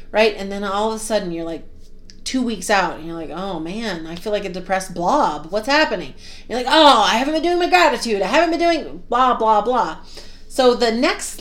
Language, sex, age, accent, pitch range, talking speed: English, female, 30-49, American, 180-280 Hz, 230 wpm